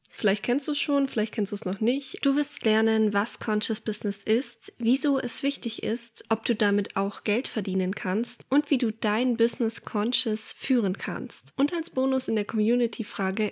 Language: German